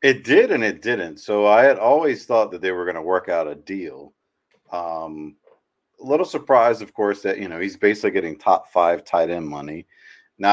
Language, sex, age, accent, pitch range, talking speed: English, male, 40-59, American, 85-120 Hz, 205 wpm